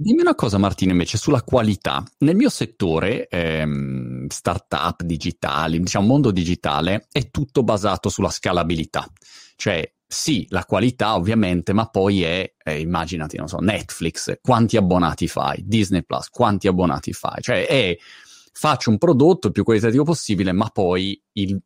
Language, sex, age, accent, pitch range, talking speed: Italian, male, 30-49, native, 90-115 Hz, 150 wpm